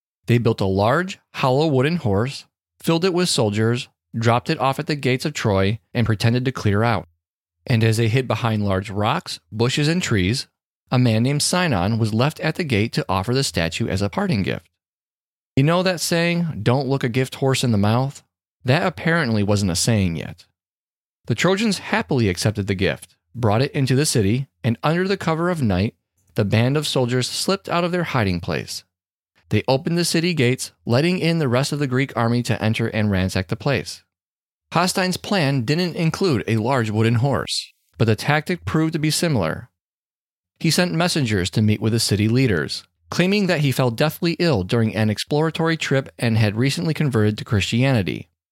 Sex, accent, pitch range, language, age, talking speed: male, American, 105-155 Hz, English, 30-49, 190 wpm